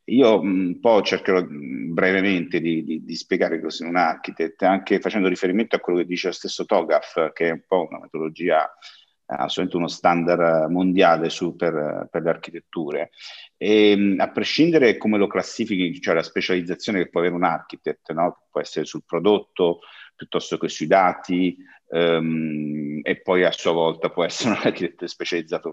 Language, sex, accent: Italian, male, native